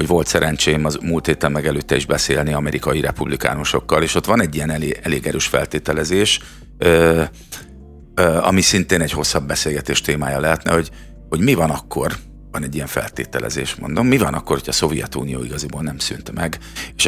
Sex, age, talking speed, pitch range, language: male, 50-69, 180 wpm, 70-80 Hz, Hungarian